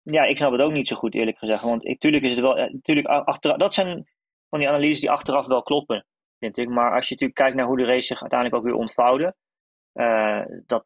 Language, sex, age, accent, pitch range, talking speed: Dutch, male, 20-39, Dutch, 115-135 Hz, 245 wpm